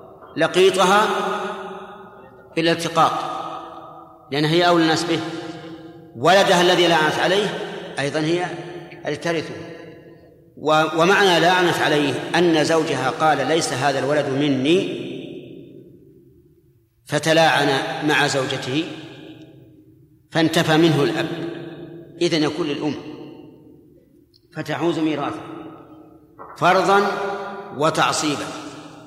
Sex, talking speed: male, 80 wpm